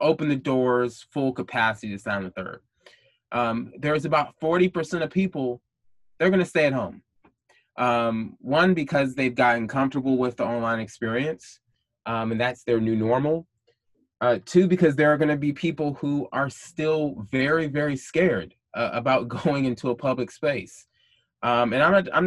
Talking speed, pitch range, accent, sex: 165 wpm, 120-150 Hz, American, male